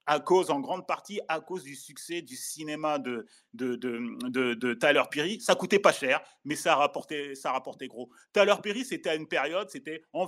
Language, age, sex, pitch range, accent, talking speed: French, 30-49, male, 135-200 Hz, French, 180 wpm